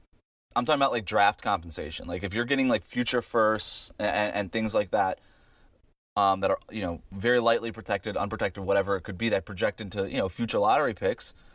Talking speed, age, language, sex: 210 wpm, 20-39, English, male